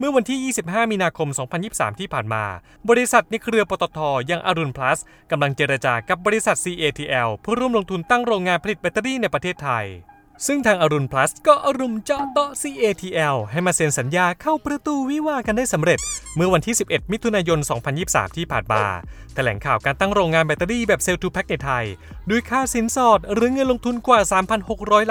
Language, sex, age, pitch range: Thai, male, 20-39, 155-245 Hz